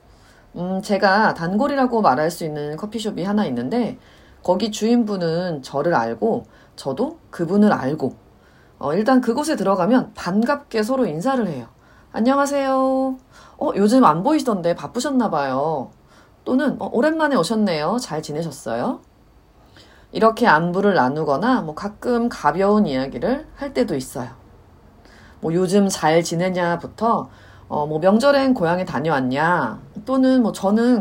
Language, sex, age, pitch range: Korean, female, 30-49, 160-245 Hz